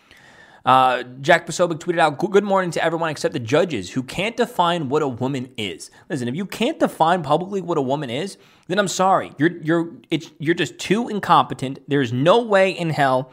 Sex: male